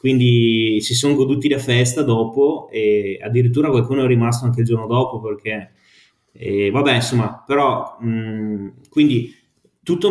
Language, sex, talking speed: Italian, male, 135 wpm